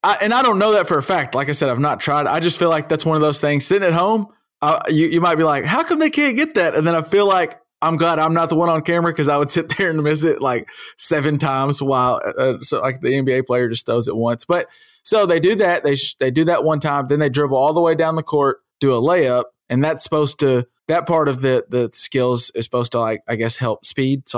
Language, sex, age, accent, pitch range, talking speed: English, male, 20-39, American, 135-175 Hz, 290 wpm